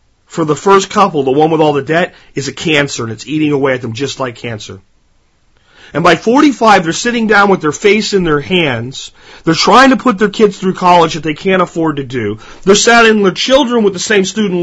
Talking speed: 235 wpm